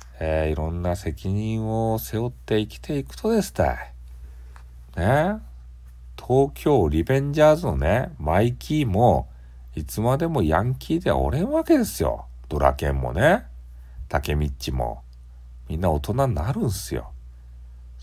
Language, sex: Japanese, male